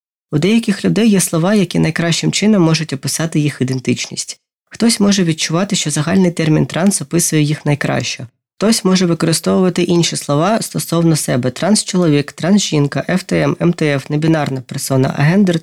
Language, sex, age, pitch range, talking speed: Ukrainian, female, 20-39, 145-180 Hz, 140 wpm